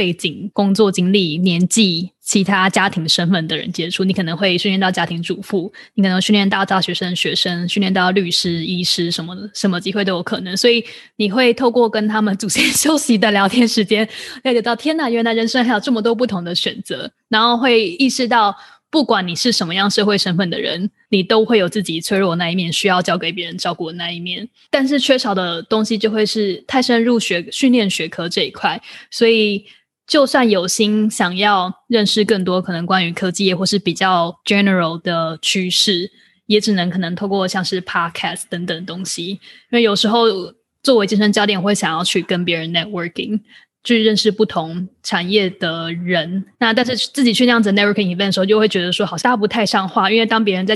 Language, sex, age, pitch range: English, female, 20-39, 185-225 Hz